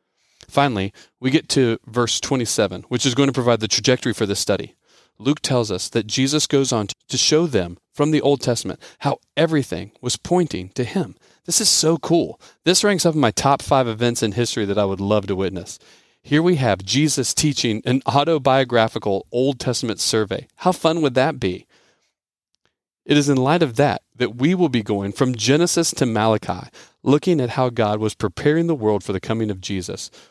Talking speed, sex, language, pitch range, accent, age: 195 wpm, male, English, 110-145 Hz, American, 40-59